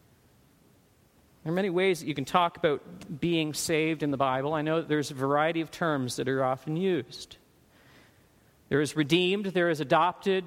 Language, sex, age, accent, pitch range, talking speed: English, male, 40-59, American, 175-240 Hz, 185 wpm